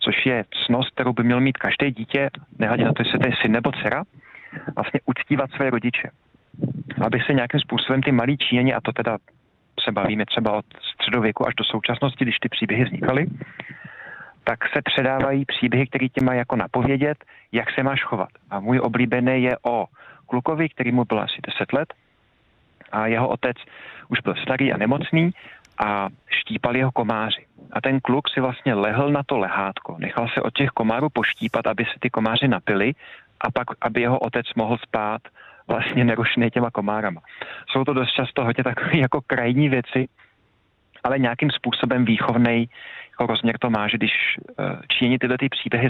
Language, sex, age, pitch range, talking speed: Czech, male, 40-59, 115-130 Hz, 175 wpm